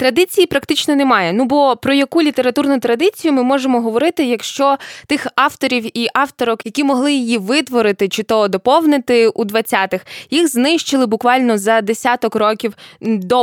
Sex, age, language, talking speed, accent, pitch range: female, 20-39, Ukrainian, 145 wpm, native, 225-290 Hz